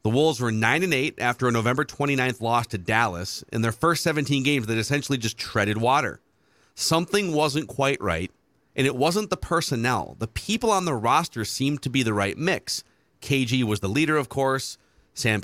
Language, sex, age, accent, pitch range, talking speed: English, male, 40-59, American, 110-145 Hz, 195 wpm